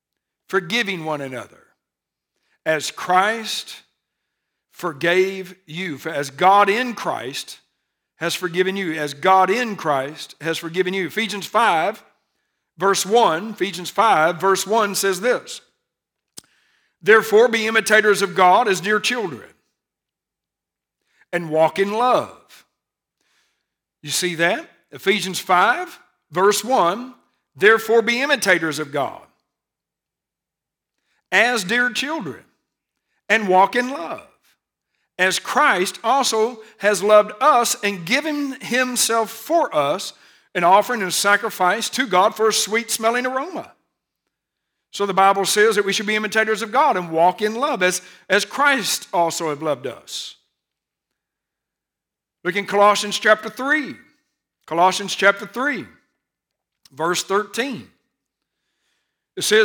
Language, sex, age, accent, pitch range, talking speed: English, male, 60-79, American, 180-230 Hz, 120 wpm